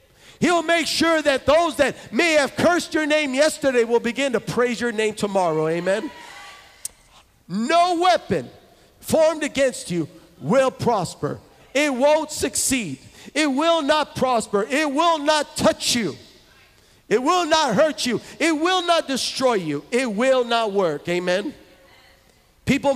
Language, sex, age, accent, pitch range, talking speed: English, male, 50-69, American, 185-290 Hz, 145 wpm